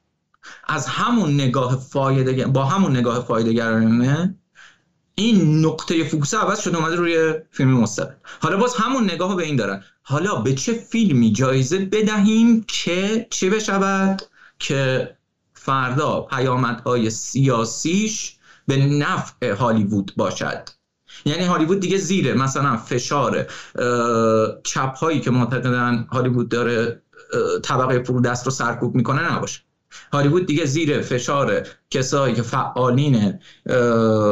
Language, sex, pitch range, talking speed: Persian, male, 120-160 Hz, 120 wpm